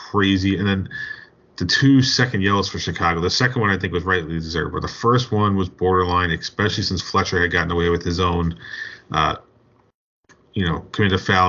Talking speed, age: 200 wpm, 30-49